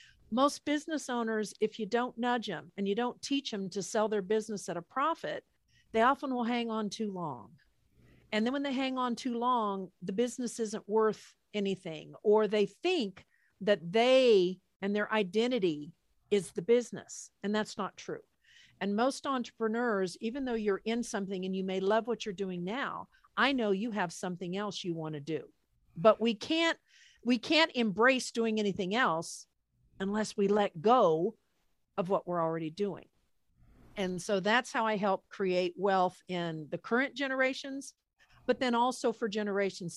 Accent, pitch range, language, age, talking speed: American, 195-240 Hz, English, 50-69, 175 wpm